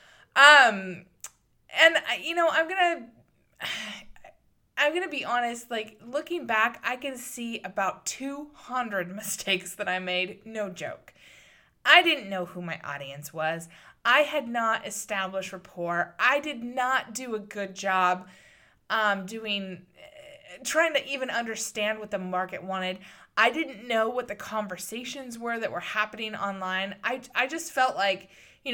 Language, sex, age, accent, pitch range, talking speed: English, female, 20-39, American, 185-270 Hz, 150 wpm